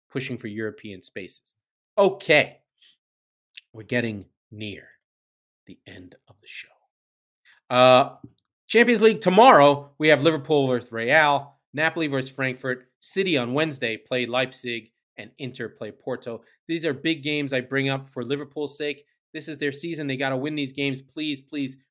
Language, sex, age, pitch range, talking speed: English, male, 30-49, 115-140 Hz, 155 wpm